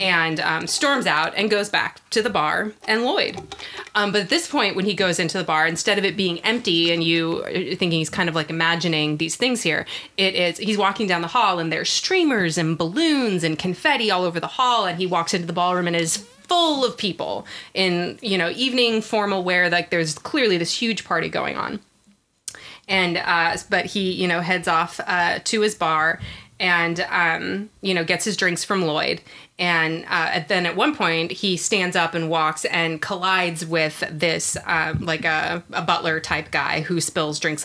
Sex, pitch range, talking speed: female, 165-205 Hz, 205 wpm